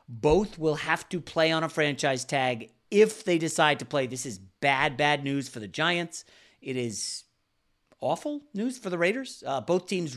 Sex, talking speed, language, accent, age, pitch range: male, 190 wpm, English, American, 40-59, 130-170 Hz